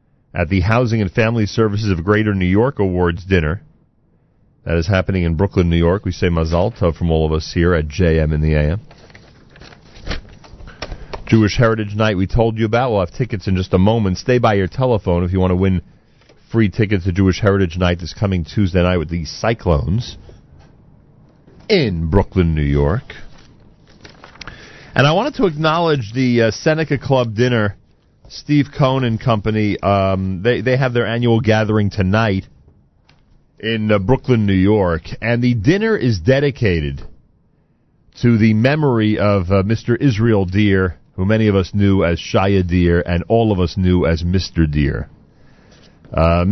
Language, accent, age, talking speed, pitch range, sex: English, American, 40-59, 170 wpm, 85-115 Hz, male